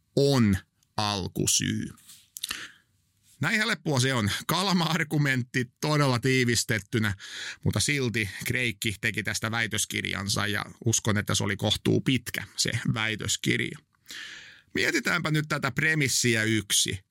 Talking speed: 100 wpm